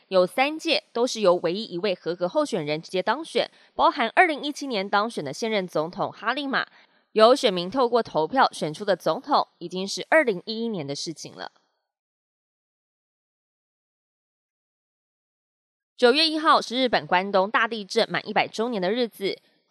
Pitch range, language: 180-245 Hz, Chinese